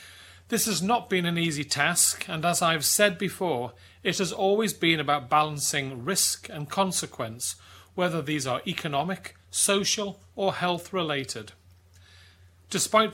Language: English